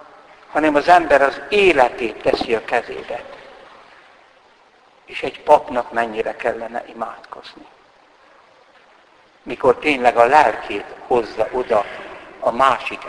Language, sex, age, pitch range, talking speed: Hungarian, male, 60-79, 120-175 Hz, 100 wpm